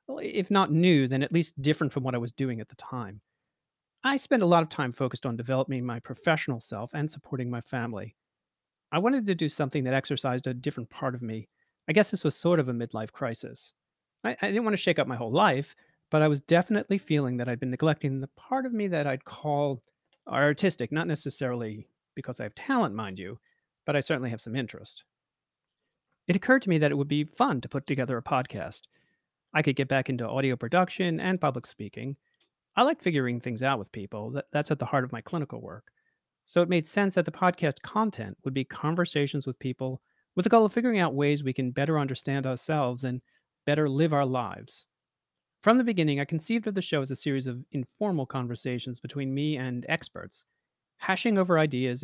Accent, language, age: American, English, 40-59